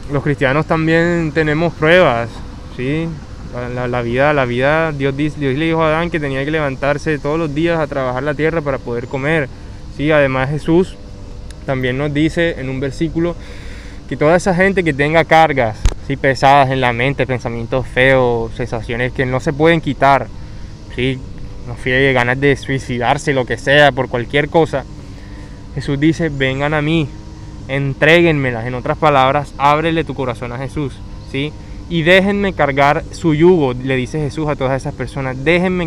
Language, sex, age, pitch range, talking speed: Spanish, male, 20-39, 120-160 Hz, 165 wpm